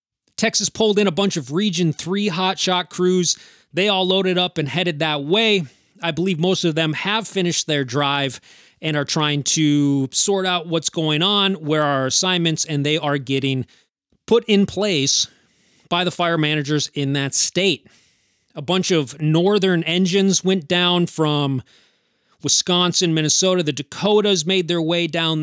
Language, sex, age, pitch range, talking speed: English, male, 30-49, 145-185 Hz, 165 wpm